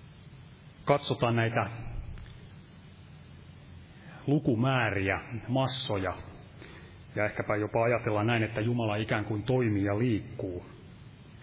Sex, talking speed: male, 85 wpm